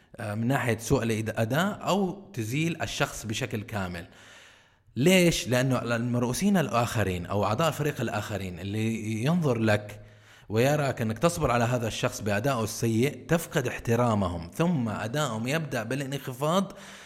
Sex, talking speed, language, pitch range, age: male, 120 wpm, Arabic, 105-140 Hz, 20-39